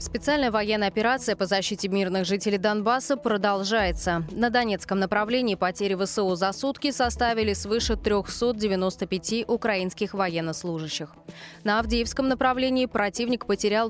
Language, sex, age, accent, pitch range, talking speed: Russian, female, 20-39, native, 185-230 Hz, 110 wpm